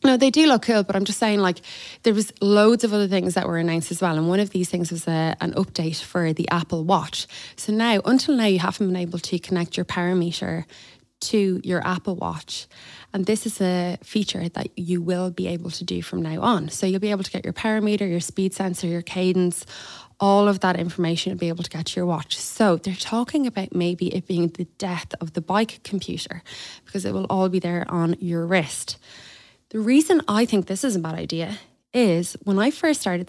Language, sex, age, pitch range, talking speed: English, female, 20-39, 170-200 Hz, 225 wpm